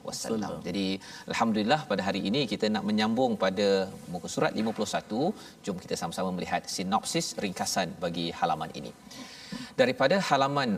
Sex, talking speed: male, 135 wpm